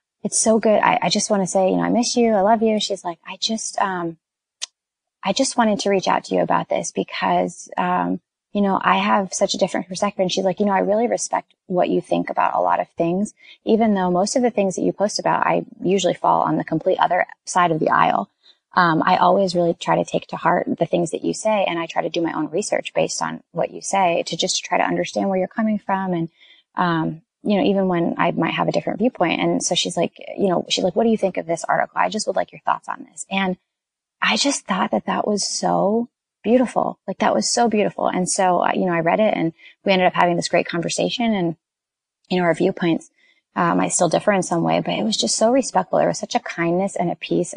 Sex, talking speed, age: female, 260 wpm, 20-39